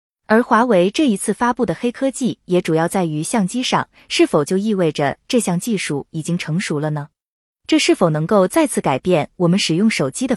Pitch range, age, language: 160-235 Hz, 20-39, Chinese